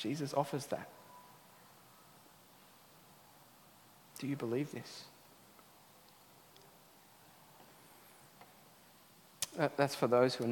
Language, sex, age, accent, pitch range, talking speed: English, male, 40-59, Australian, 125-165 Hz, 70 wpm